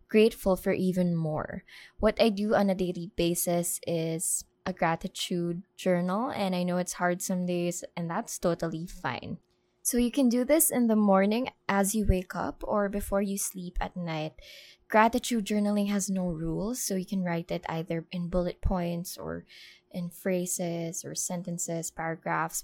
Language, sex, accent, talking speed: English, female, Filipino, 170 wpm